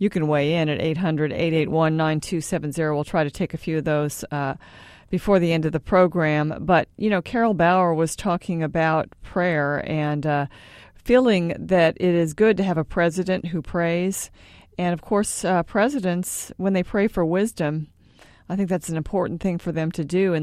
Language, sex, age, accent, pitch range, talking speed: English, female, 40-59, American, 150-185 Hz, 190 wpm